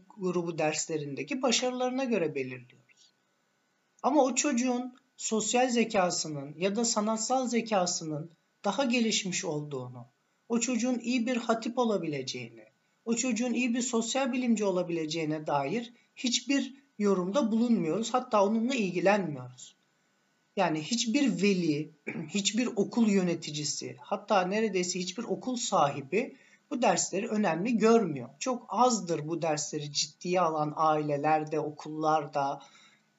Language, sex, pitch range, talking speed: Turkish, male, 170-240 Hz, 110 wpm